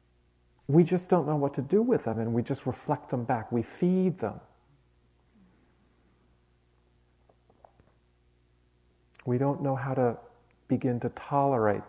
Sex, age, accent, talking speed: male, 50-69, American, 130 wpm